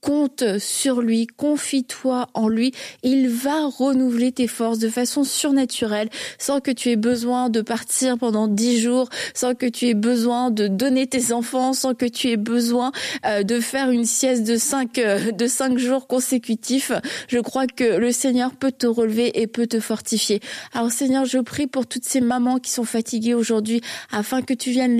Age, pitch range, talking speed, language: 20-39, 235-270 Hz, 180 wpm, French